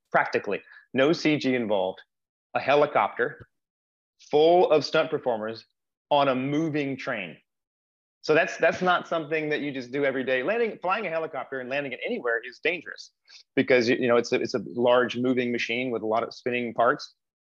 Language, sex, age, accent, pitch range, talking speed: English, male, 30-49, American, 125-150 Hz, 175 wpm